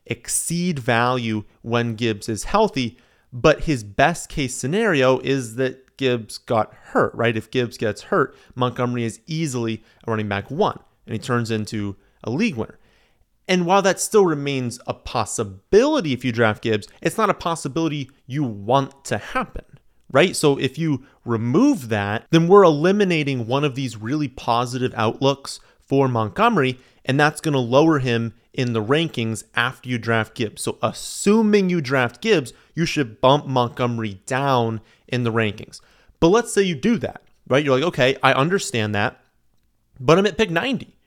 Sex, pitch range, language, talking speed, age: male, 115-155 Hz, English, 170 wpm, 30-49